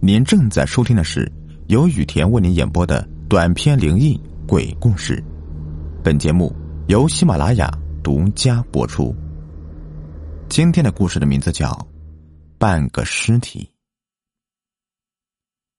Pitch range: 75-120 Hz